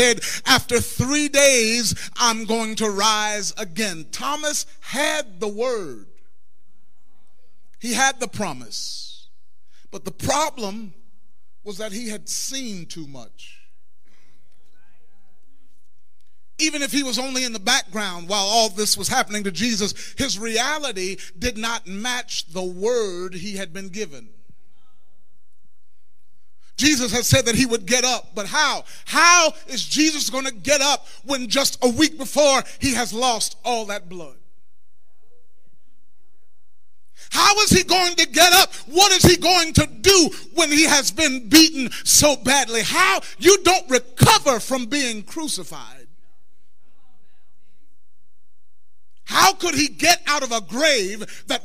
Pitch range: 195-285 Hz